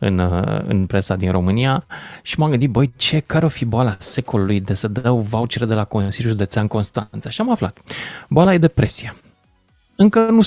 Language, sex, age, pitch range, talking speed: Romanian, male, 20-39, 105-150 Hz, 180 wpm